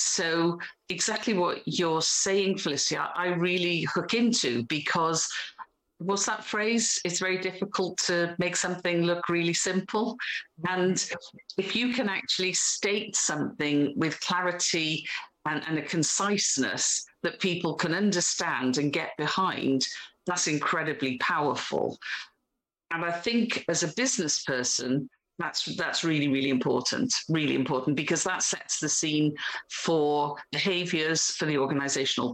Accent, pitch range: British, 150-185 Hz